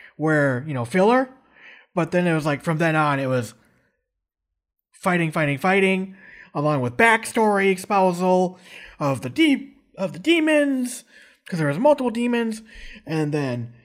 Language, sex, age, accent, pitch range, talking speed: English, male, 30-49, American, 150-220 Hz, 135 wpm